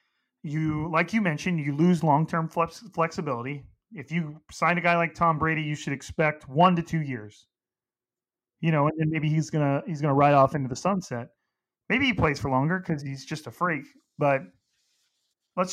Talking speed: 200 wpm